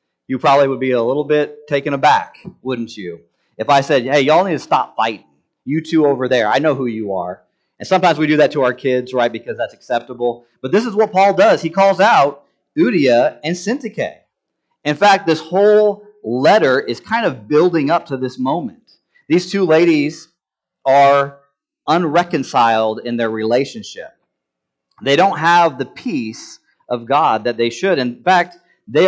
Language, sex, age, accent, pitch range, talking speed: English, male, 40-59, American, 125-170 Hz, 180 wpm